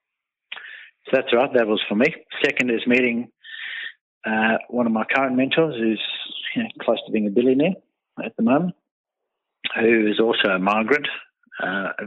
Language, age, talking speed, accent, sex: English, 50-69, 170 wpm, Australian, male